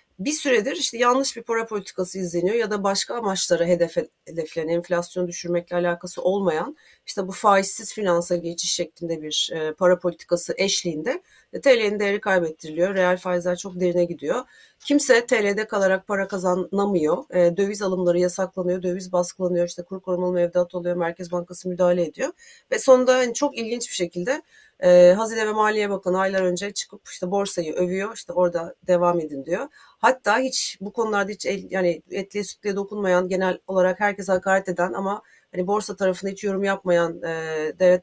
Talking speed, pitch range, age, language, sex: 160 wpm, 175-205 Hz, 40-59, Turkish, female